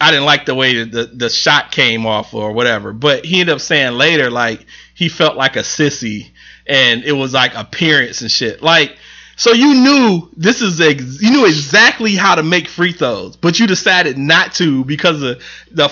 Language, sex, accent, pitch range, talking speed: English, male, American, 135-205 Hz, 215 wpm